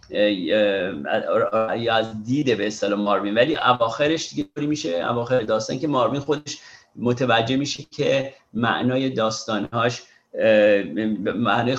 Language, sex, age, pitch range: Persian, male, 40-59, 115-140 Hz